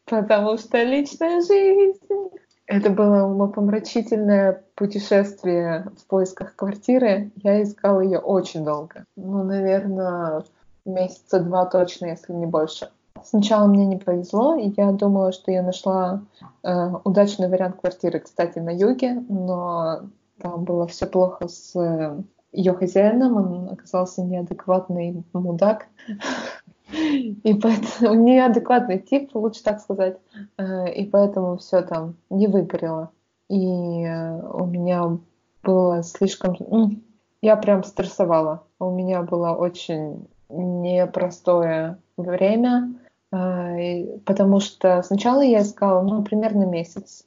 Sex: female